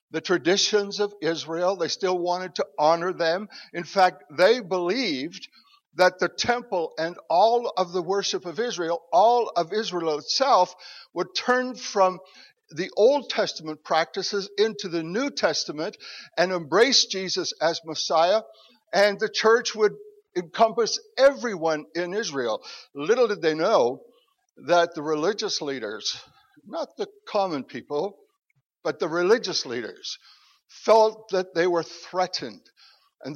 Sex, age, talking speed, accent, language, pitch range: male, 60-79, 135 wpm, American, English, 165-235 Hz